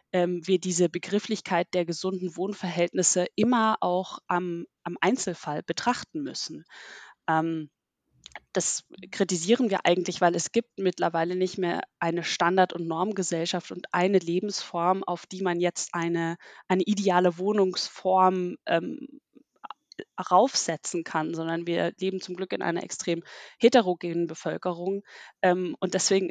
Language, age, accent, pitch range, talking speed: German, 20-39, German, 170-195 Hz, 130 wpm